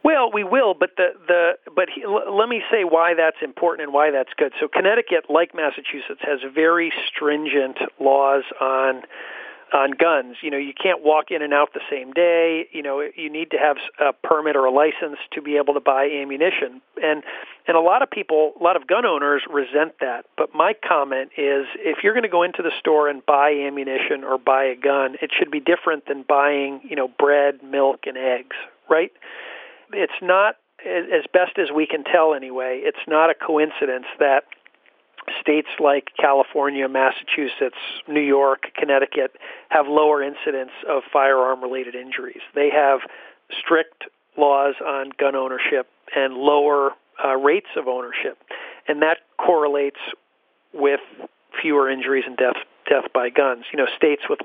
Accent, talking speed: American, 175 wpm